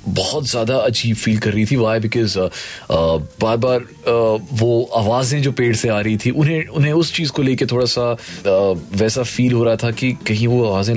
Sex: male